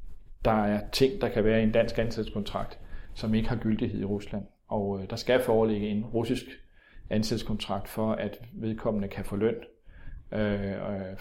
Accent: native